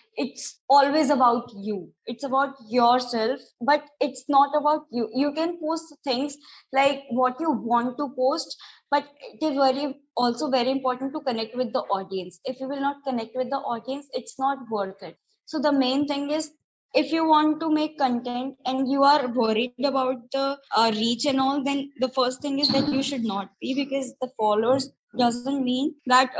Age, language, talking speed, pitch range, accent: 20-39, English, 185 wpm, 240-290 Hz, Indian